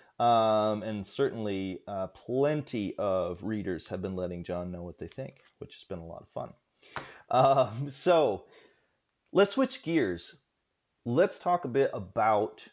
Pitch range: 95-125 Hz